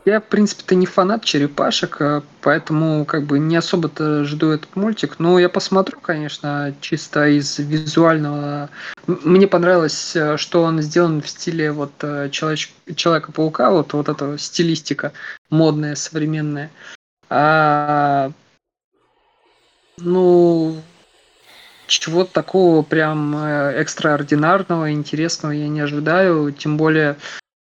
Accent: native